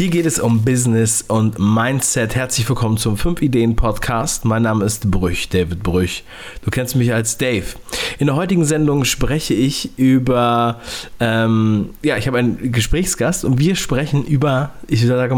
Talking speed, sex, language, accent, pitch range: 160 wpm, male, German, German, 110-130 Hz